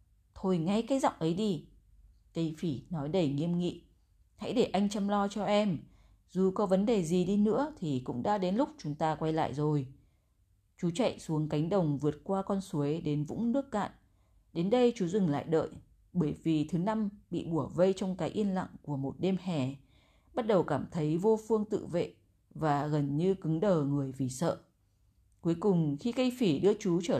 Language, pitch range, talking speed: Vietnamese, 145-205 Hz, 205 wpm